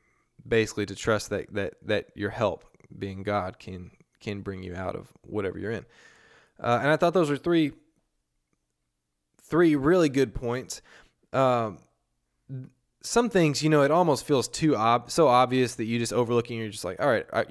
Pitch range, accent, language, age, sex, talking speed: 100-130 Hz, American, English, 20-39, male, 175 wpm